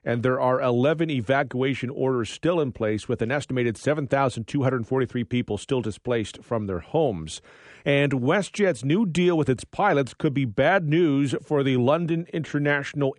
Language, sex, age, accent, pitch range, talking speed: English, male, 40-59, American, 120-155 Hz, 155 wpm